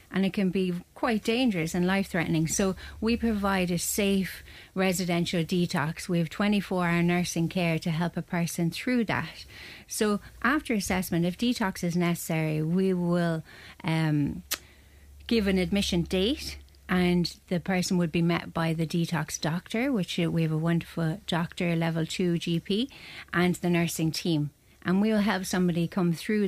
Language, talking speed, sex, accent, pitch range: English, 160 wpm, female, Irish, 165-190 Hz